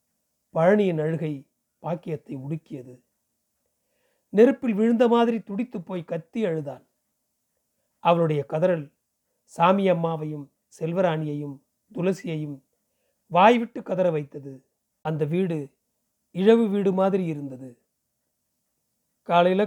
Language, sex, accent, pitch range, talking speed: Tamil, male, native, 190-230 Hz, 80 wpm